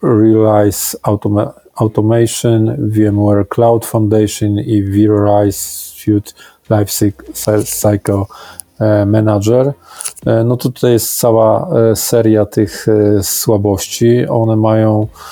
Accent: native